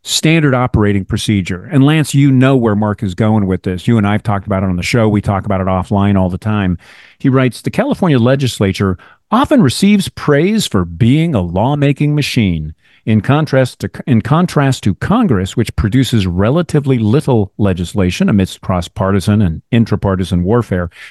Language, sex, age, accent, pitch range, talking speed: English, male, 50-69, American, 100-135 Hz, 170 wpm